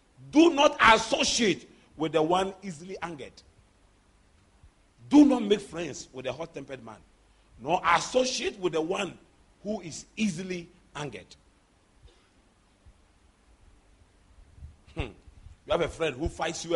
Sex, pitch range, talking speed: male, 135-210 Hz, 115 wpm